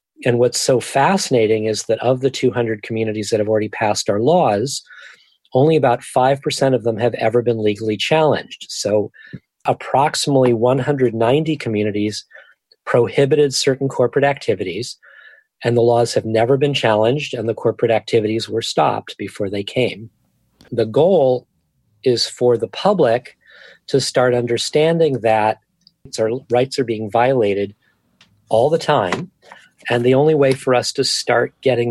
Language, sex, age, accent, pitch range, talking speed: English, male, 40-59, American, 110-135 Hz, 145 wpm